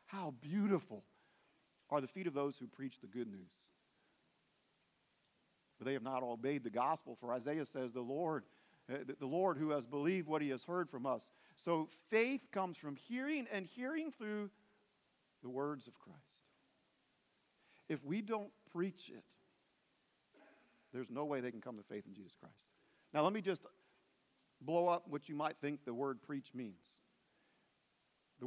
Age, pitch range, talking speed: 50-69, 135-185 Hz, 160 wpm